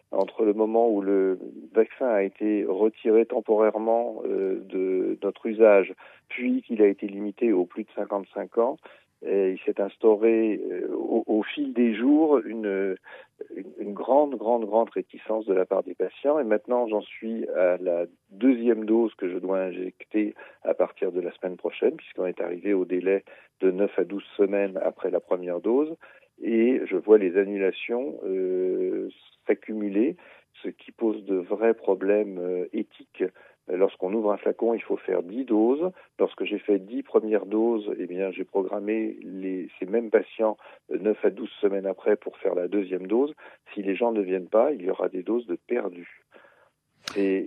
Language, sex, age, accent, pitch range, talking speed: Italian, male, 40-59, French, 95-115 Hz, 180 wpm